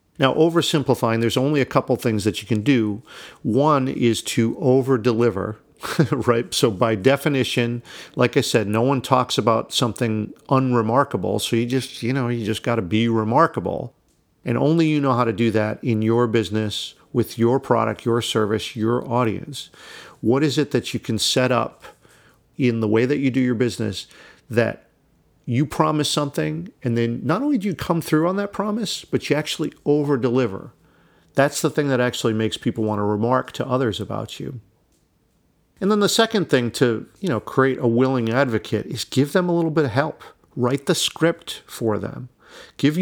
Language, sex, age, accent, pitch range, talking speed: English, male, 50-69, American, 115-150 Hz, 185 wpm